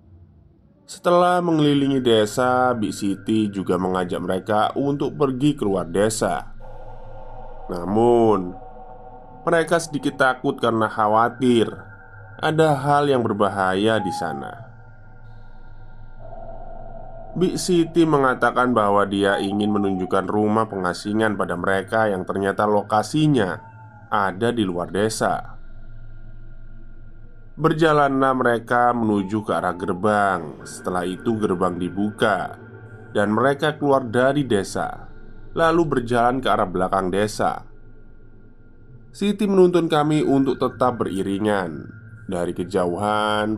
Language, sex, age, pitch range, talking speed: Indonesian, male, 20-39, 105-130 Hz, 100 wpm